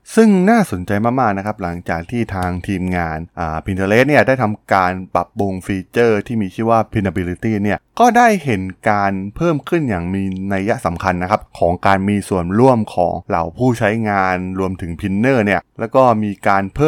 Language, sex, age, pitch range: Thai, male, 20-39, 95-120 Hz